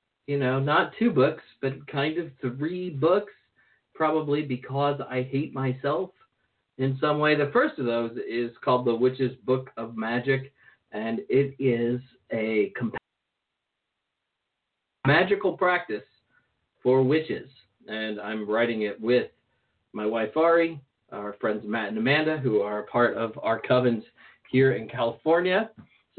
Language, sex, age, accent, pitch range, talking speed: English, male, 40-59, American, 120-160 Hz, 135 wpm